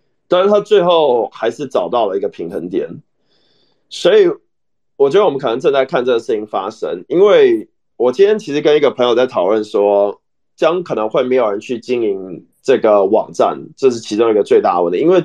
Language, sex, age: Chinese, male, 20-39